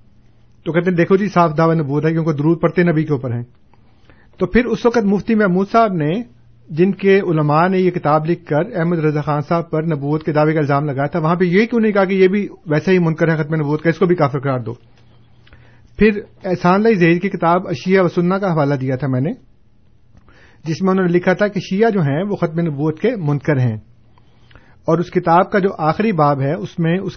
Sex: male